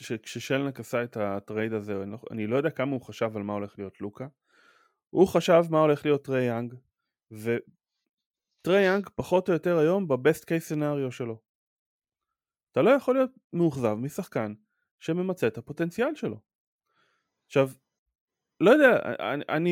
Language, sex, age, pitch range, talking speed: Hebrew, male, 20-39, 125-200 Hz, 145 wpm